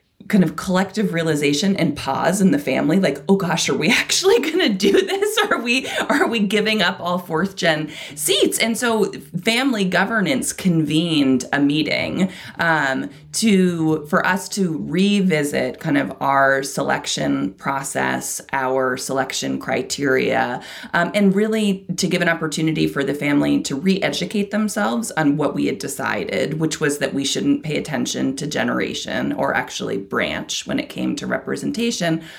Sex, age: female, 20-39